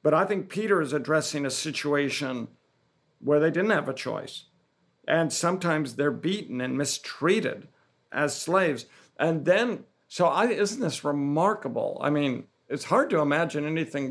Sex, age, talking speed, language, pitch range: male, 50-69, 150 wpm, English, 140-170 Hz